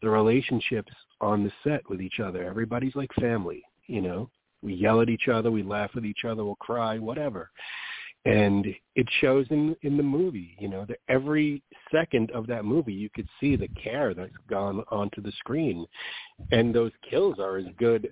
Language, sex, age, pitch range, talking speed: English, male, 40-59, 100-120 Hz, 190 wpm